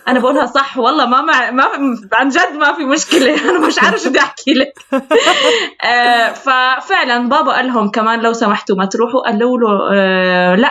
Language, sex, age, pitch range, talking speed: Arabic, female, 20-39, 220-290 Hz, 170 wpm